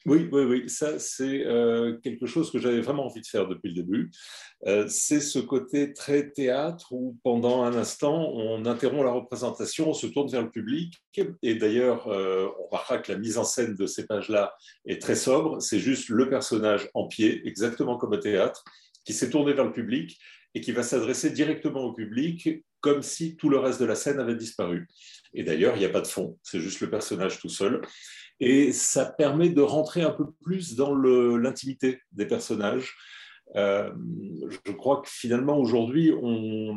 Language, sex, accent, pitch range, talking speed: French, male, French, 110-145 Hz, 195 wpm